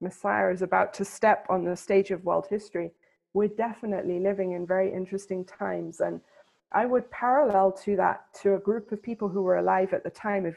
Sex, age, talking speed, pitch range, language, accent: female, 30-49, 205 wpm, 180-205 Hz, English, British